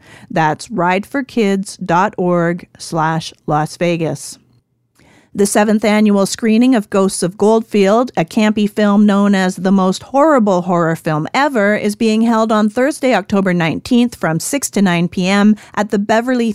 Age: 40-59